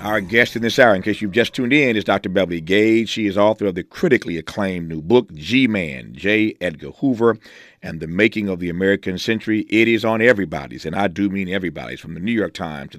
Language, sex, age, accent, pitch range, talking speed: English, male, 50-69, American, 90-115 Hz, 230 wpm